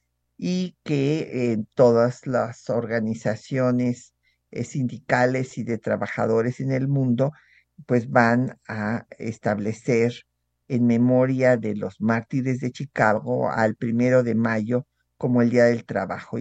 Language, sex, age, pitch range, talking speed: Spanish, male, 50-69, 115-145 Hz, 125 wpm